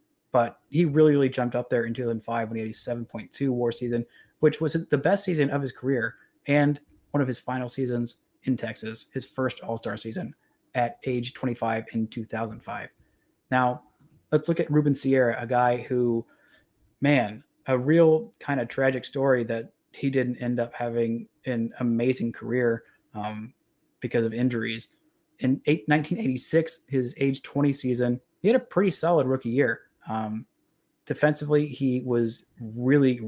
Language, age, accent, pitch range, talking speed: English, 30-49, American, 120-145 Hz, 160 wpm